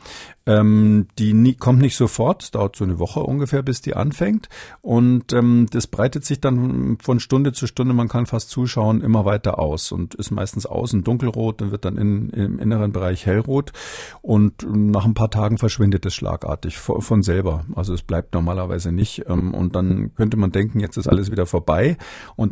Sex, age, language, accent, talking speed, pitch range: male, 50-69, German, German, 190 wpm, 90-115 Hz